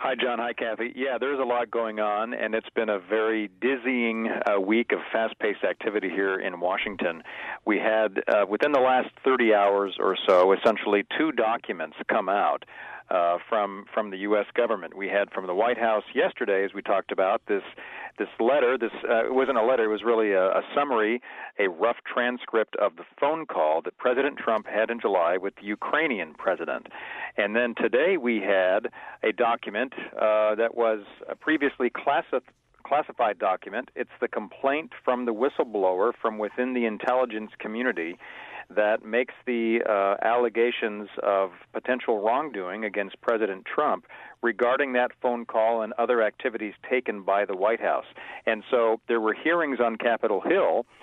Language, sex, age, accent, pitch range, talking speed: English, male, 50-69, American, 105-120 Hz, 170 wpm